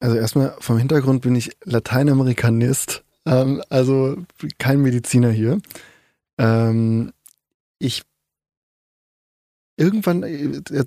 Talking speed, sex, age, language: 90 wpm, male, 20-39, German